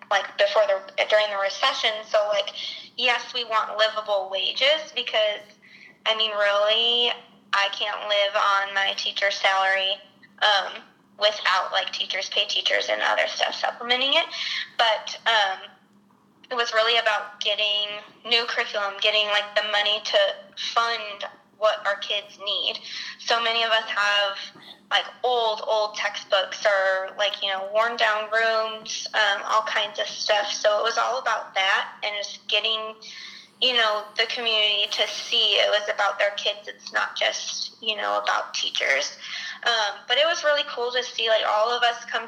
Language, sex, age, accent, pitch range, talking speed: English, female, 20-39, American, 205-235 Hz, 165 wpm